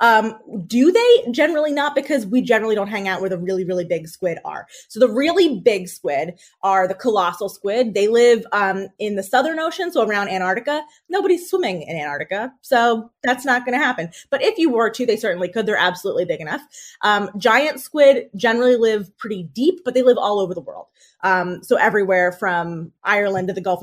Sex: female